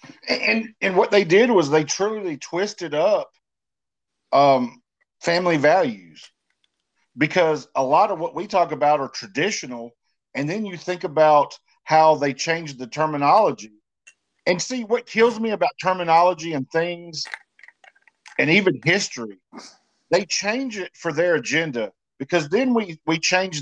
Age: 50-69